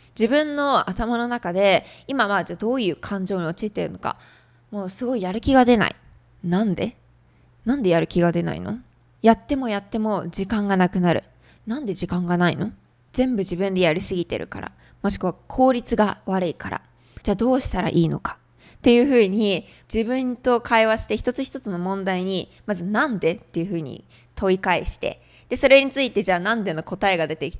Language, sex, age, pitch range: Japanese, female, 20-39, 175-230 Hz